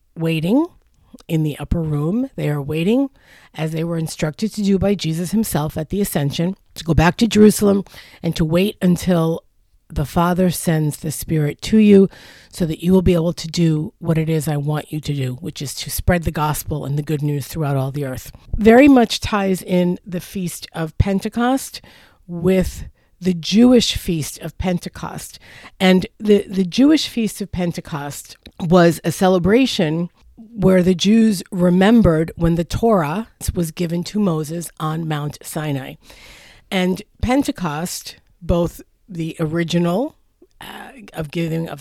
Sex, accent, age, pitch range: female, American, 50-69, 155-195 Hz